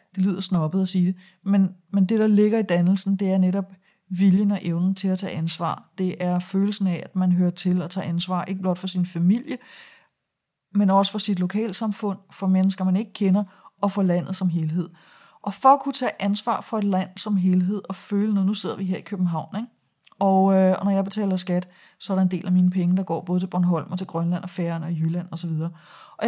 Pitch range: 185-210 Hz